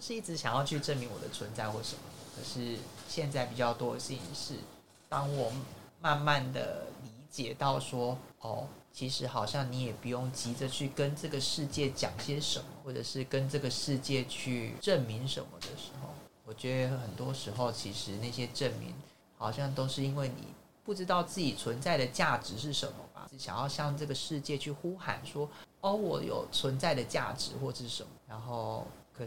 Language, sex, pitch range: Chinese, male, 125-155 Hz